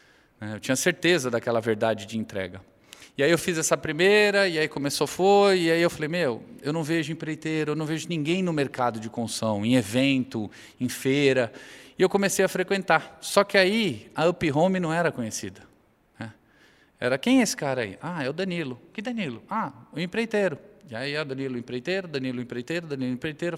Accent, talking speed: Brazilian, 195 wpm